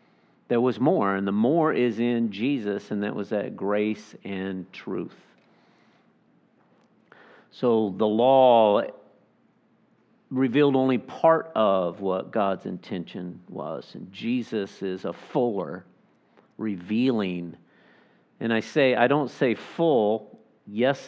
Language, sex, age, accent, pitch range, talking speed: English, male, 50-69, American, 110-135 Hz, 115 wpm